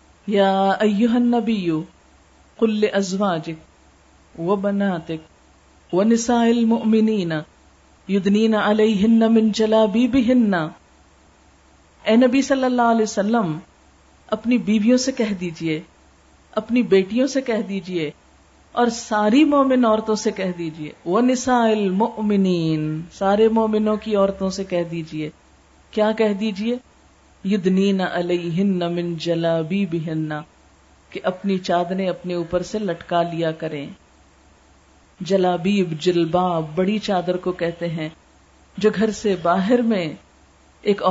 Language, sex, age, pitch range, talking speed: Urdu, female, 50-69, 170-230 Hz, 100 wpm